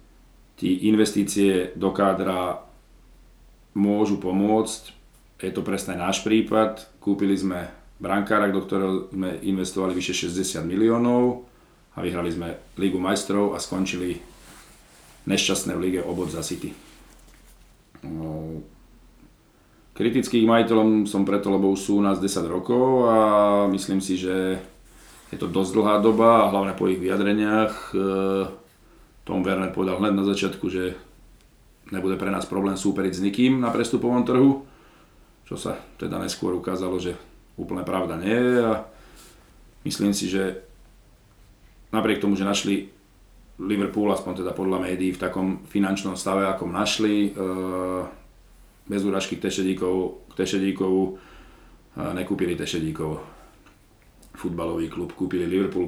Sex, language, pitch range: male, Slovak, 95-105 Hz